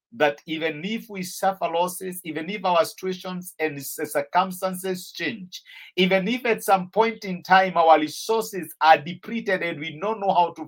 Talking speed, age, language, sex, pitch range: 170 wpm, 50-69, English, male, 170-225 Hz